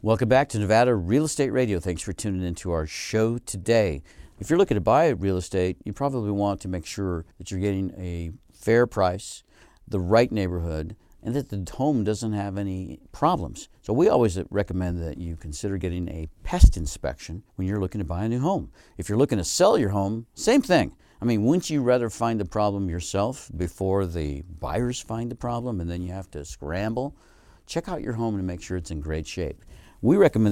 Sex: male